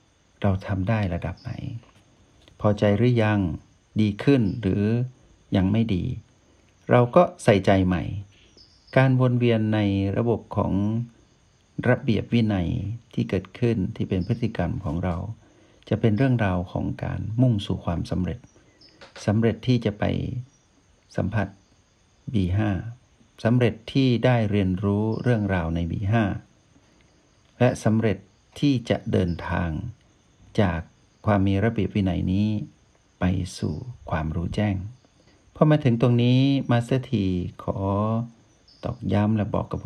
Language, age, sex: Thai, 60-79, male